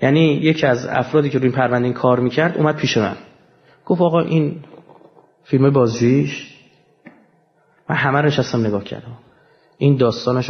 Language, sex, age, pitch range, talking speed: Persian, male, 30-49, 125-170 Hz, 135 wpm